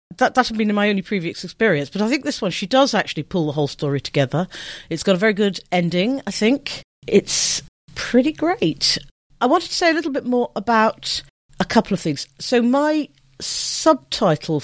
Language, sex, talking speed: English, female, 195 wpm